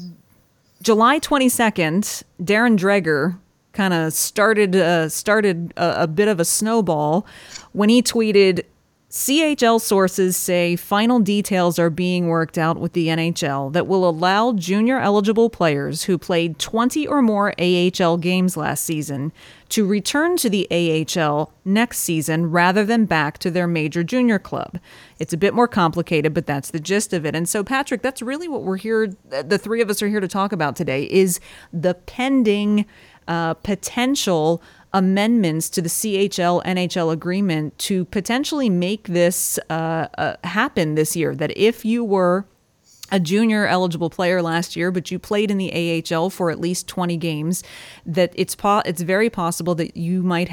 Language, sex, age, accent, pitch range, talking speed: English, female, 30-49, American, 170-210 Hz, 165 wpm